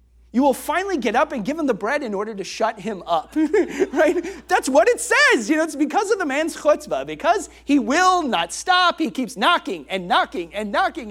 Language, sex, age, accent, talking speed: English, male, 30-49, American, 220 wpm